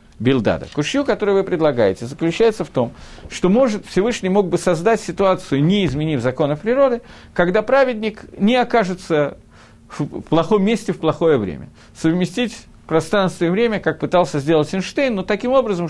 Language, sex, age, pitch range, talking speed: Russian, male, 50-69, 155-220 Hz, 150 wpm